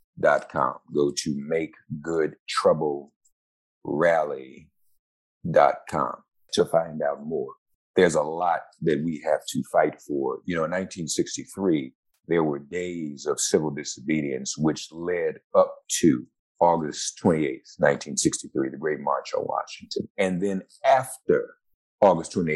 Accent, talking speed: American, 120 wpm